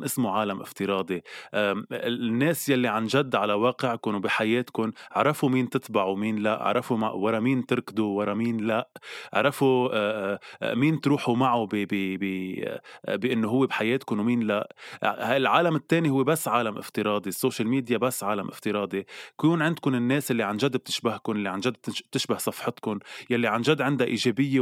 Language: Arabic